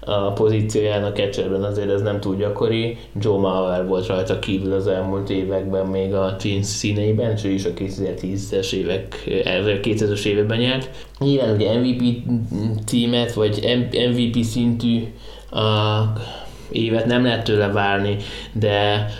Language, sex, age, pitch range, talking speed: Hungarian, male, 20-39, 100-115 Hz, 130 wpm